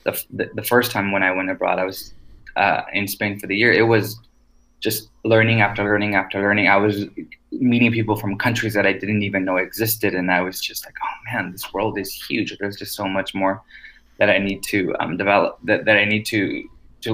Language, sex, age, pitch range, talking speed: English, male, 20-39, 95-110 Hz, 225 wpm